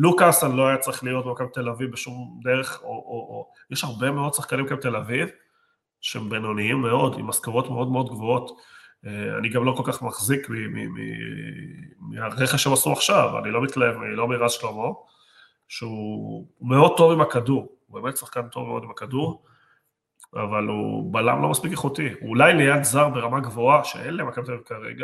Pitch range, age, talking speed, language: 120-145 Hz, 30-49, 175 wpm, Hebrew